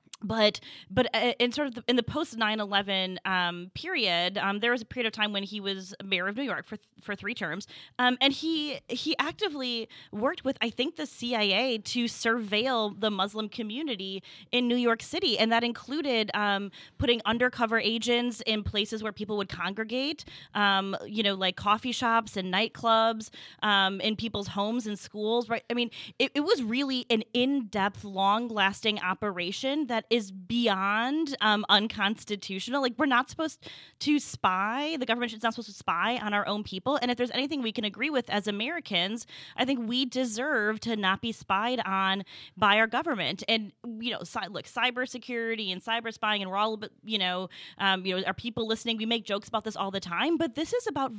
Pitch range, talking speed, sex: 195-240 Hz, 190 wpm, female